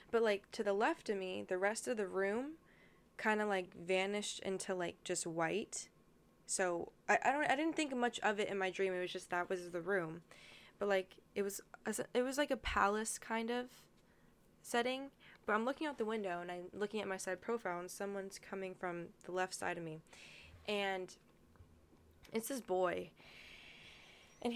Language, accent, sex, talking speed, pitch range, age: English, American, female, 195 wpm, 180-215 Hz, 10-29